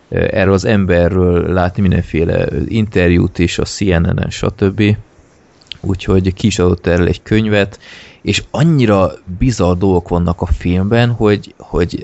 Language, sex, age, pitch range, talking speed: Hungarian, male, 20-39, 90-110 Hz, 130 wpm